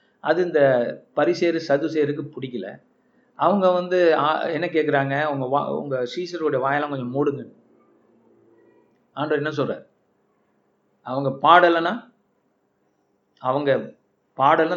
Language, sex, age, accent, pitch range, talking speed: Tamil, male, 50-69, native, 140-180 Hz, 95 wpm